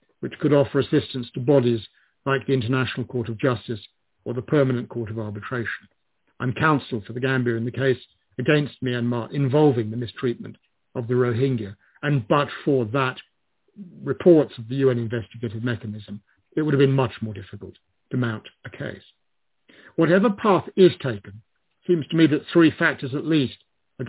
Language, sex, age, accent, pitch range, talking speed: English, male, 50-69, British, 120-145 Hz, 170 wpm